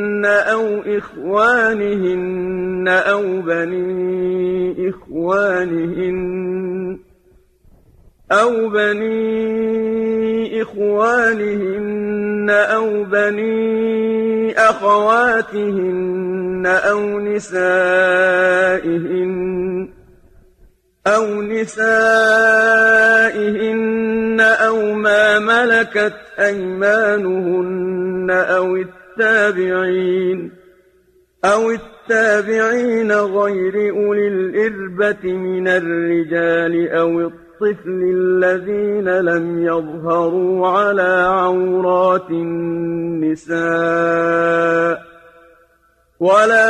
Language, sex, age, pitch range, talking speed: Arabic, male, 40-59, 185-210 Hz, 50 wpm